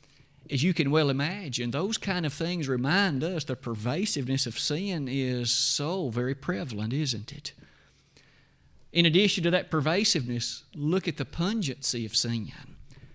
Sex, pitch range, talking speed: male, 130-175 Hz, 145 wpm